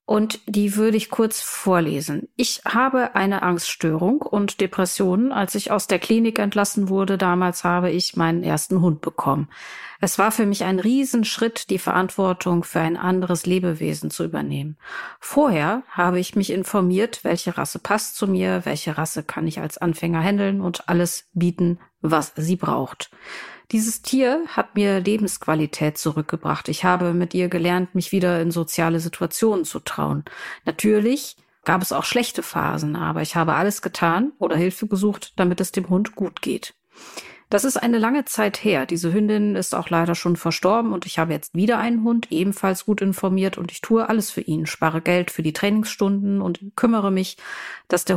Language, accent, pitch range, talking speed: German, German, 170-215 Hz, 175 wpm